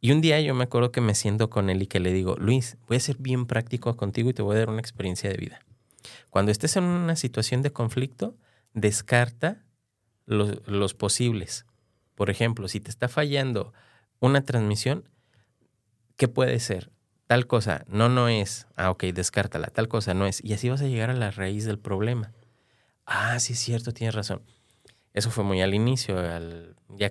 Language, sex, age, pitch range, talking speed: Spanish, male, 30-49, 105-125 Hz, 195 wpm